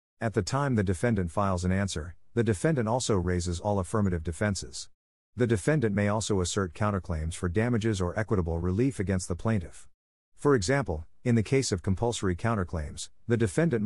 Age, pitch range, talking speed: 40-59, 90-115 Hz, 170 wpm